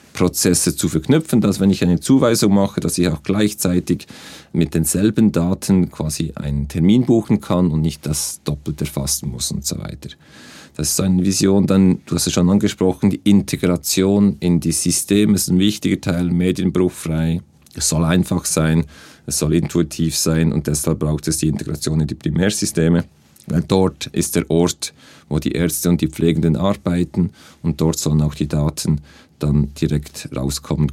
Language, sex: German, male